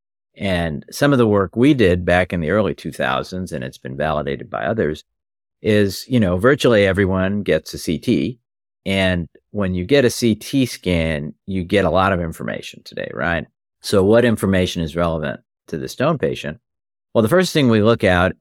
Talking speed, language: 185 wpm, English